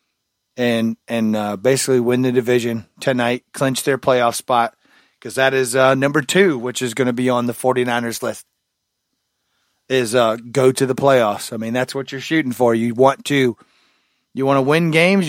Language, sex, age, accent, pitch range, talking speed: English, male, 30-49, American, 115-135 Hz, 190 wpm